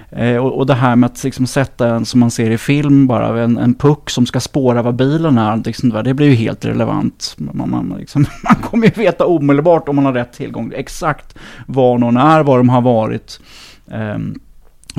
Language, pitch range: Swedish, 120-145 Hz